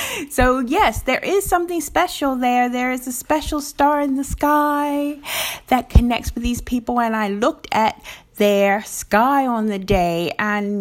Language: English